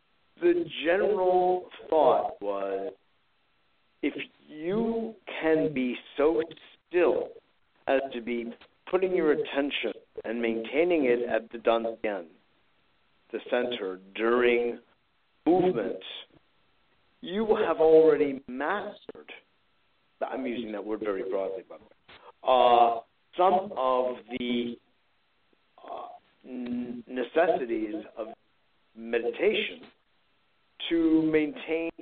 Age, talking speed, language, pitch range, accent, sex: 50-69, 90 wpm, English, 120-185 Hz, American, male